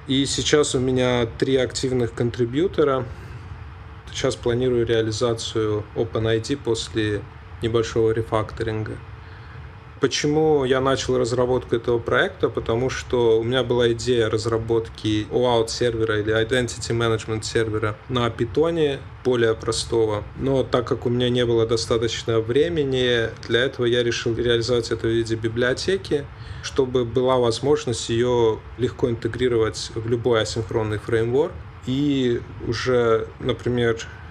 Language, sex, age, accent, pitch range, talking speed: Russian, male, 20-39, native, 110-125 Hz, 120 wpm